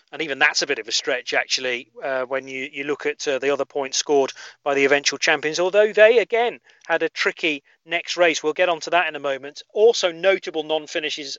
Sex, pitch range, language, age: male, 145-190 Hz, English, 40-59